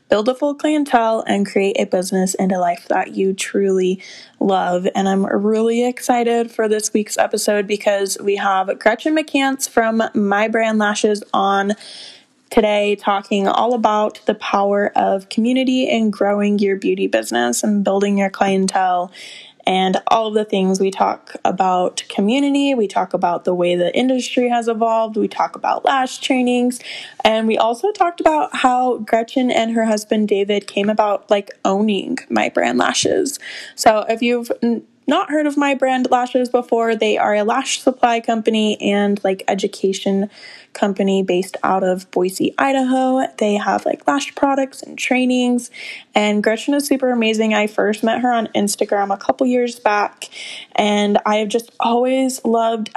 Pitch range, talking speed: 200-245 Hz, 165 wpm